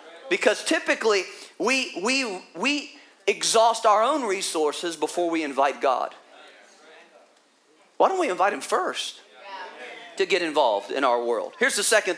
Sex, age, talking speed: male, 40-59, 135 wpm